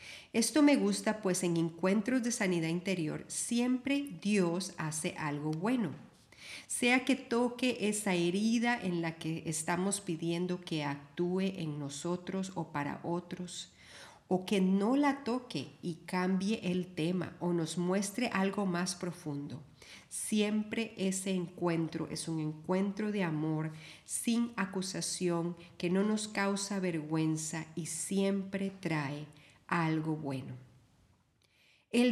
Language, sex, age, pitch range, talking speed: Spanish, female, 40-59, 160-210 Hz, 125 wpm